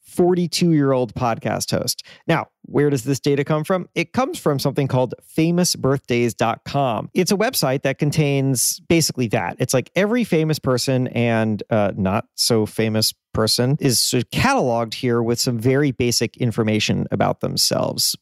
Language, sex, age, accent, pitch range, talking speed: English, male, 40-59, American, 115-145 Hz, 140 wpm